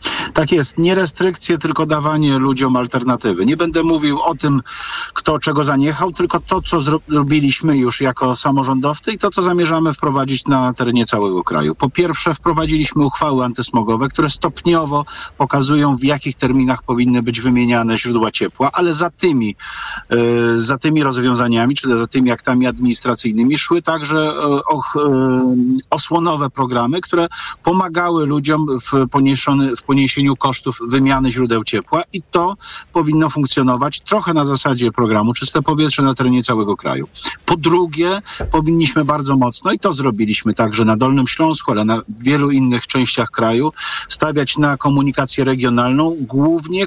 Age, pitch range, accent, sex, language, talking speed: 40-59, 125-155 Hz, native, male, Polish, 140 wpm